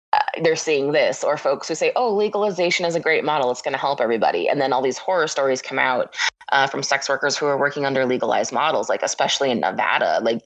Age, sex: 20-39, female